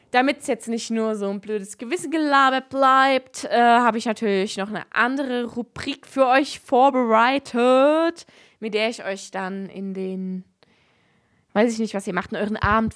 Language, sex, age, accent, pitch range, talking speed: German, female, 20-39, German, 205-255 Hz, 175 wpm